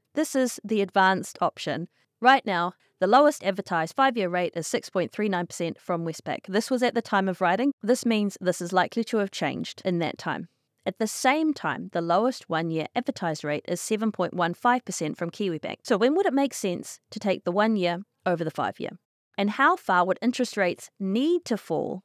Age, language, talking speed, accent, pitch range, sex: 30-49, English, 190 wpm, Australian, 175-240 Hz, female